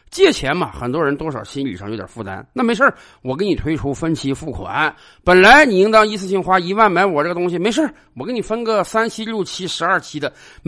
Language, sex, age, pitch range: Chinese, male, 50-69, 155-240 Hz